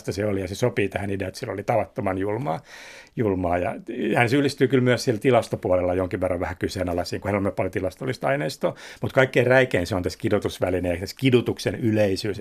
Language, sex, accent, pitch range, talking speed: Finnish, male, native, 95-125 Hz, 190 wpm